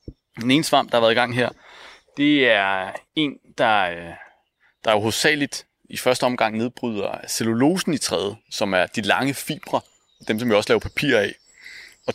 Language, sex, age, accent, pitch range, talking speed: Danish, male, 30-49, native, 115-150 Hz, 180 wpm